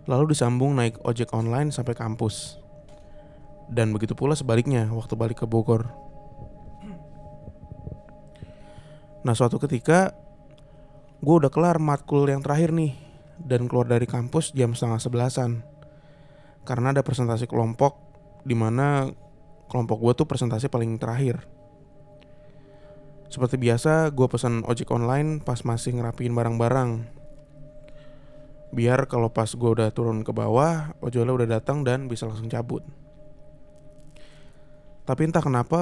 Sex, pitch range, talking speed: male, 115-145 Hz, 120 wpm